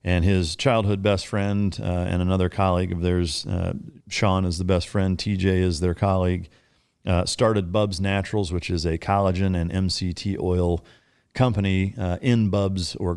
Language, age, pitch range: English, 40-59, 85-100 Hz